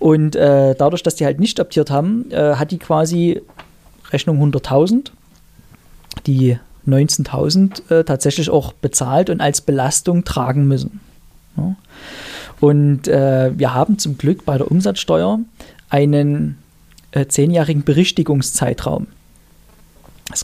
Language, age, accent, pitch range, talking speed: German, 40-59, German, 135-170 Hz, 120 wpm